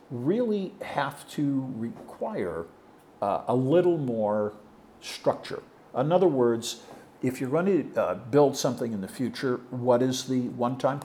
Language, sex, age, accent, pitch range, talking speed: English, male, 50-69, American, 120-170 Hz, 140 wpm